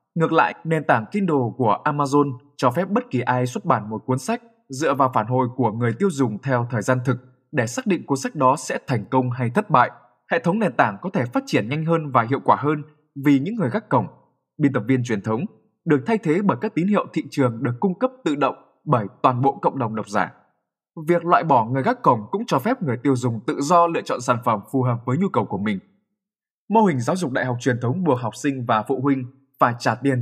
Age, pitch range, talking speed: 20-39, 125-180 Hz, 255 wpm